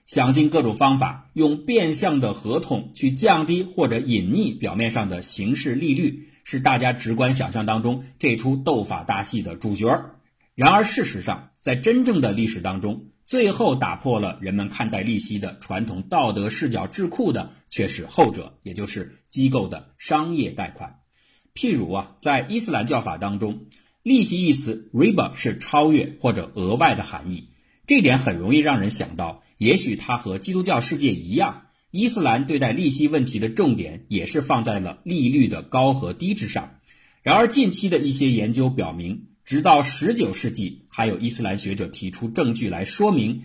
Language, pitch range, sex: Chinese, 105-155 Hz, male